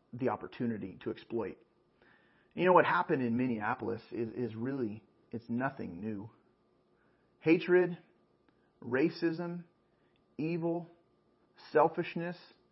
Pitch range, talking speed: 120-165 Hz, 95 wpm